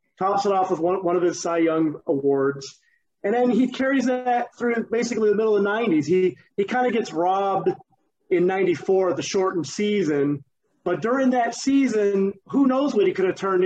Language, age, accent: English, 30-49, American